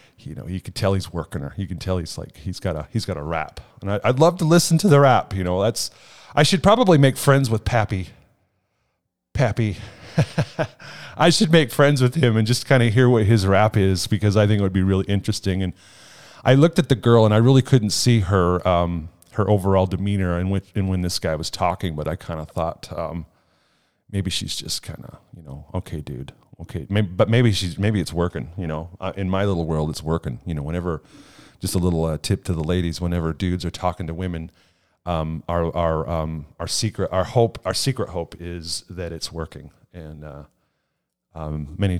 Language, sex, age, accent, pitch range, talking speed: English, male, 30-49, American, 80-110 Hz, 215 wpm